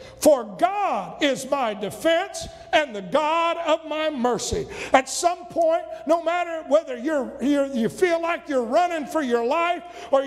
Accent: American